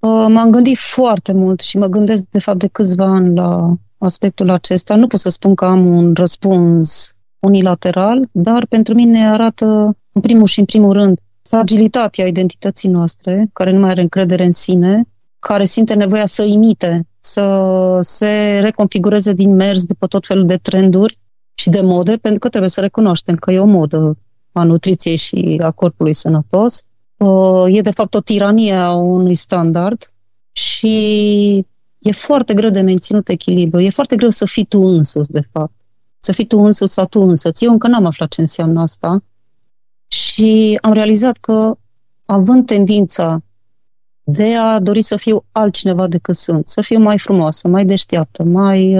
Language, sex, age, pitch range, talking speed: Romanian, female, 30-49, 175-215 Hz, 170 wpm